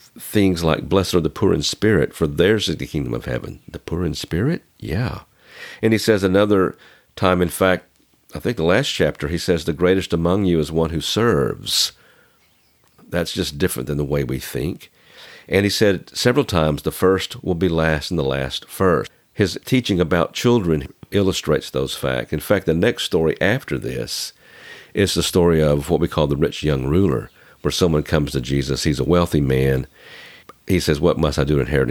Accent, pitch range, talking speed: American, 70-95 Hz, 200 wpm